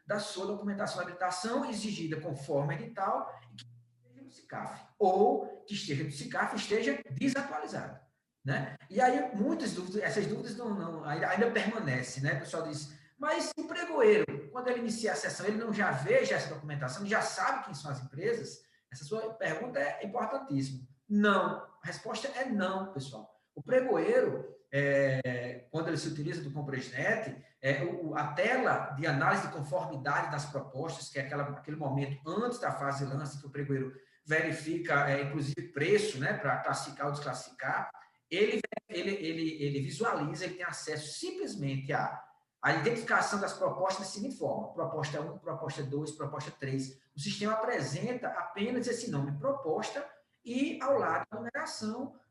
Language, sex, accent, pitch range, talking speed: Portuguese, male, Brazilian, 145-220 Hz, 160 wpm